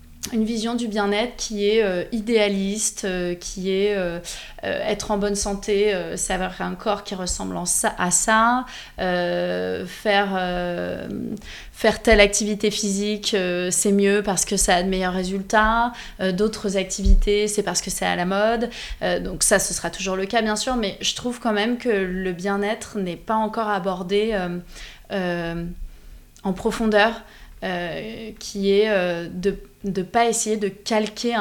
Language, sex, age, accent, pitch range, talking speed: French, female, 20-39, French, 180-215 Hz, 170 wpm